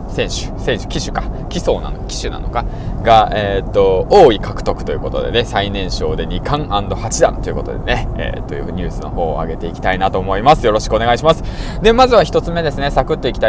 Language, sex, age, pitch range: Japanese, male, 20-39, 90-140 Hz